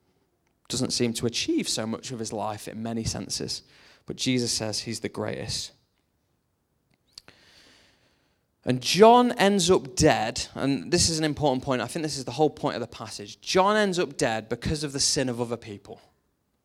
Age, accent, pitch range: 20-39, British, 120-170 Hz